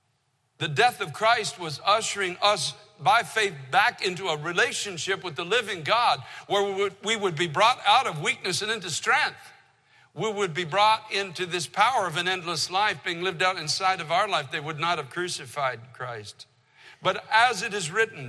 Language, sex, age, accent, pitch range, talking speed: English, male, 60-79, American, 140-190 Hz, 190 wpm